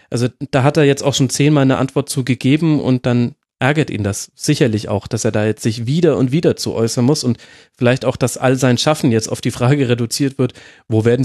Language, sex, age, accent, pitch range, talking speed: German, male, 30-49, German, 120-145 Hz, 240 wpm